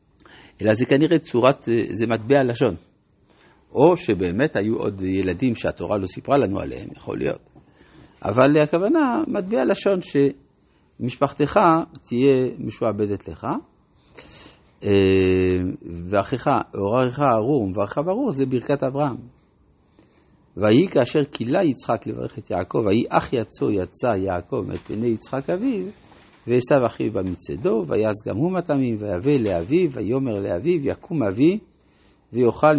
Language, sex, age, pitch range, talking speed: Hebrew, male, 50-69, 105-145 Hz, 120 wpm